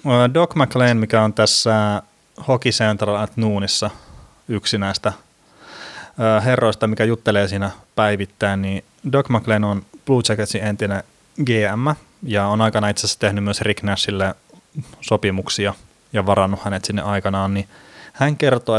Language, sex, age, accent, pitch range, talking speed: Finnish, male, 30-49, native, 100-115 Hz, 130 wpm